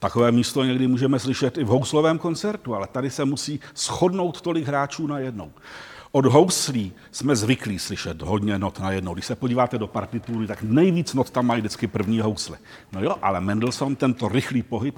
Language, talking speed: Czech, 180 wpm